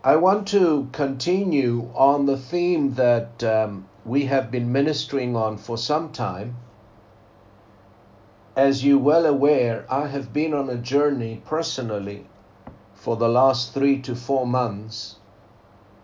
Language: English